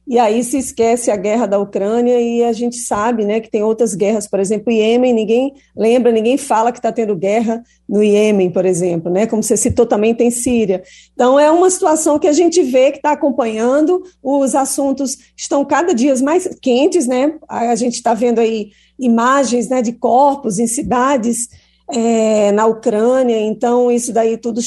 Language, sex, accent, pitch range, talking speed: Portuguese, female, Brazilian, 215-250 Hz, 185 wpm